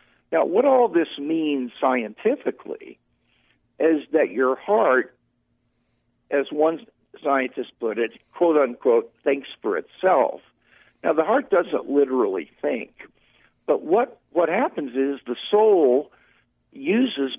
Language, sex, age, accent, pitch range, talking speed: English, male, 60-79, American, 120-165 Hz, 115 wpm